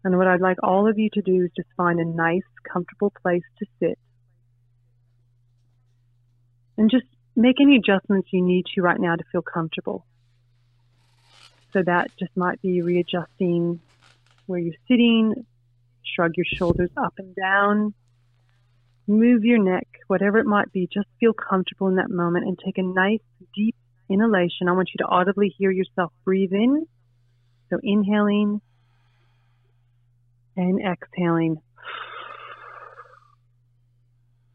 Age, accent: 30-49, American